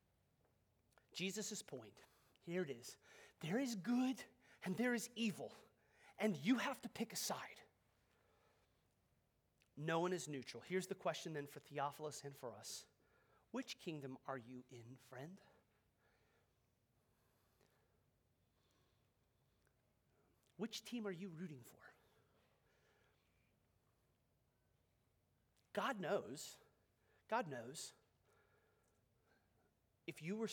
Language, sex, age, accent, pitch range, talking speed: English, male, 30-49, American, 120-195 Hz, 100 wpm